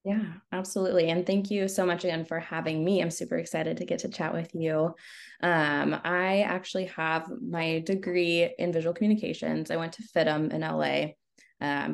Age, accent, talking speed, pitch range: 20-39, American, 180 wpm, 150-190 Hz